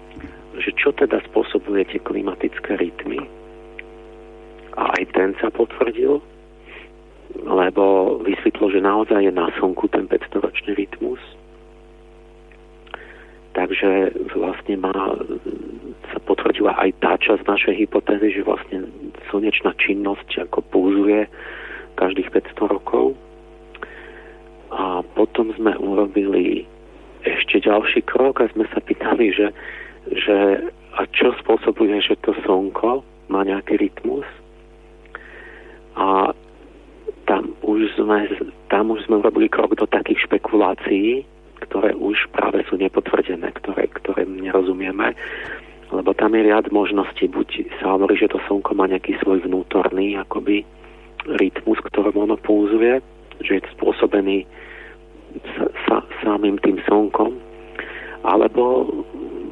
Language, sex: Slovak, male